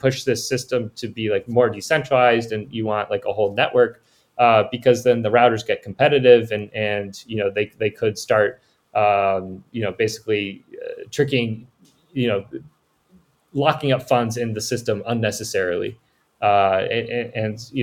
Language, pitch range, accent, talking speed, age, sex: English, 105-130 Hz, American, 165 wpm, 20-39, male